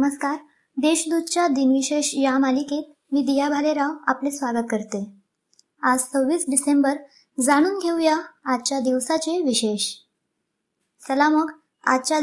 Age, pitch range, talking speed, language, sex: 20-39, 260-305 Hz, 85 wpm, Marathi, male